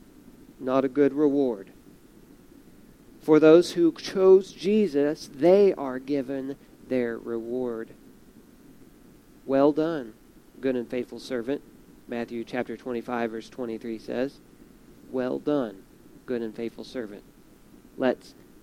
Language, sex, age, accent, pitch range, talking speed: English, male, 40-59, American, 125-180 Hz, 105 wpm